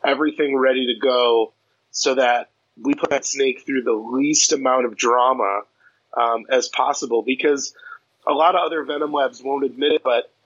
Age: 30-49